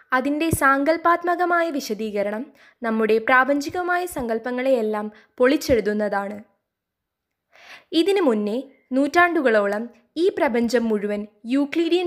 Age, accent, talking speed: 20-39, native, 65 wpm